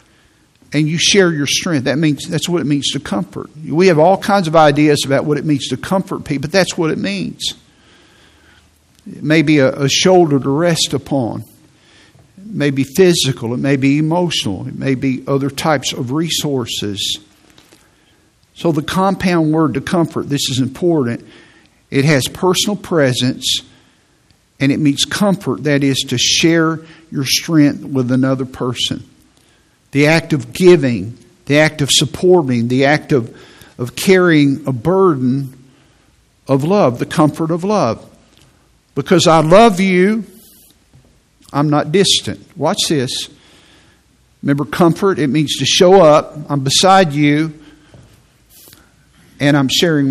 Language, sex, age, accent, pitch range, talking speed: English, male, 50-69, American, 135-170 Hz, 150 wpm